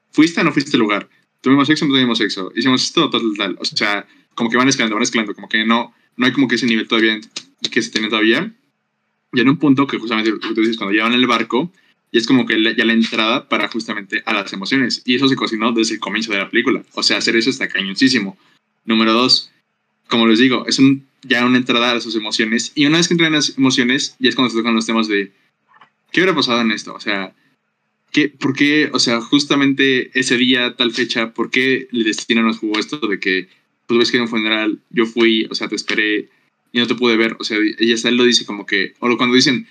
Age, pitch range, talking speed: 20-39, 115-130 Hz, 245 wpm